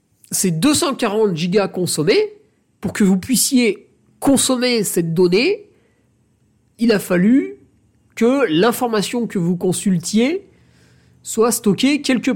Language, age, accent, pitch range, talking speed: French, 50-69, French, 160-225 Hz, 100 wpm